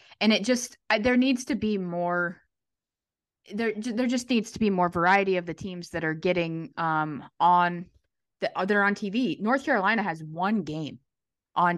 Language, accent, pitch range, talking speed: English, American, 160-210 Hz, 175 wpm